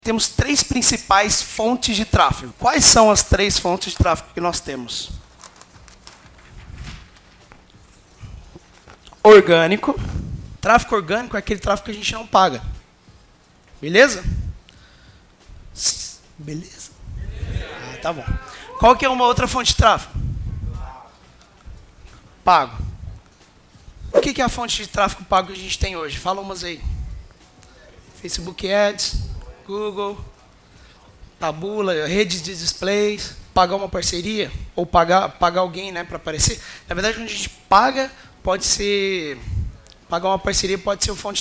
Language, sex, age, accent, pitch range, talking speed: Portuguese, male, 20-39, Brazilian, 160-210 Hz, 130 wpm